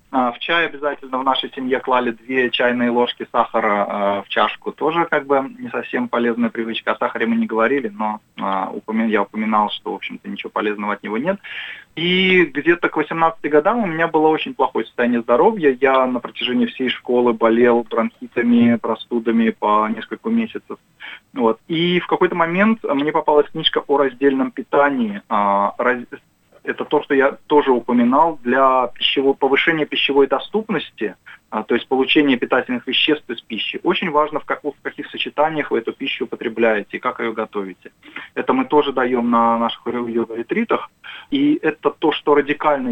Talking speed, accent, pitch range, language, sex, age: 165 wpm, native, 115-150 Hz, Russian, male, 20-39